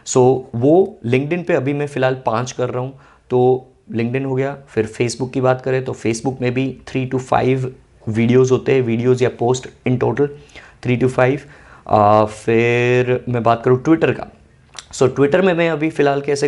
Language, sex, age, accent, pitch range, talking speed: Hindi, male, 20-39, native, 115-145 Hz, 195 wpm